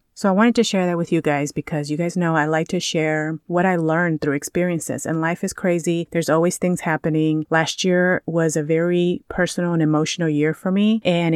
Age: 30-49